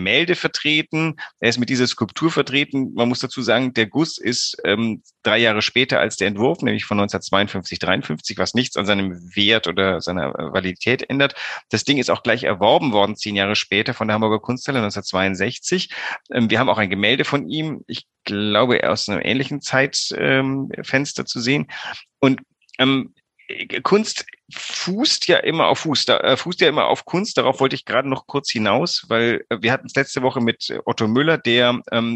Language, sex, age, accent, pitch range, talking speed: German, male, 40-59, German, 105-135 Hz, 185 wpm